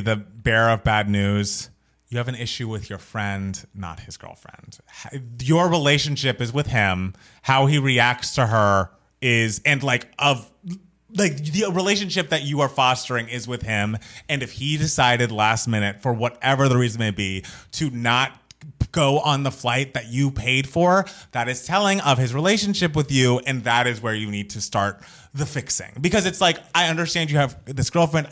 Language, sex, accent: English, male, American